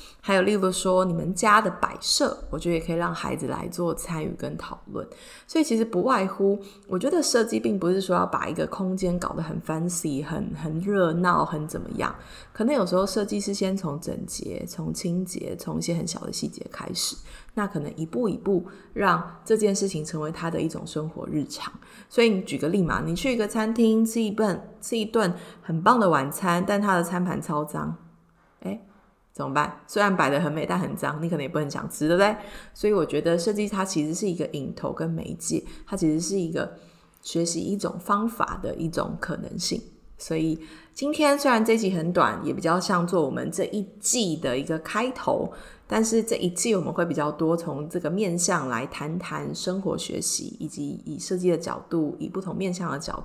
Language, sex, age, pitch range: Chinese, female, 20-39, 160-210 Hz